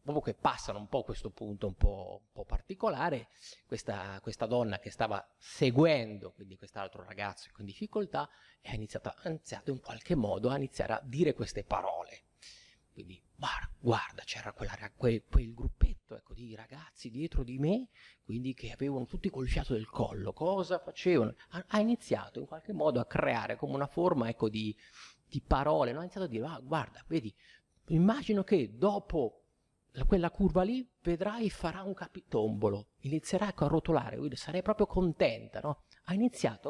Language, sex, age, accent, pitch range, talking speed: Italian, male, 30-49, native, 105-165 Hz, 165 wpm